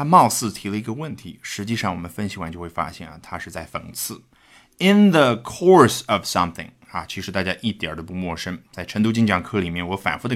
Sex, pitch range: male, 90-140 Hz